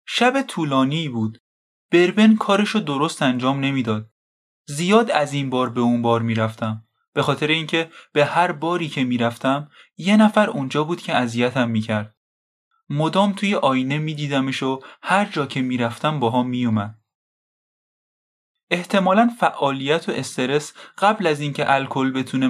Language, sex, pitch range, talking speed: Persian, male, 125-170 Hz, 140 wpm